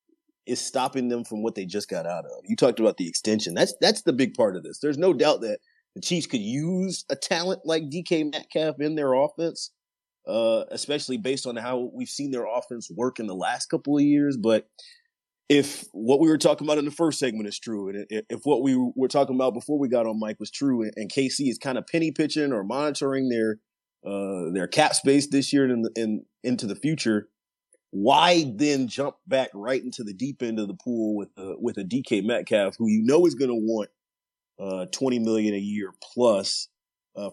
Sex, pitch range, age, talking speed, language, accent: male, 110-145 Hz, 30-49, 215 wpm, English, American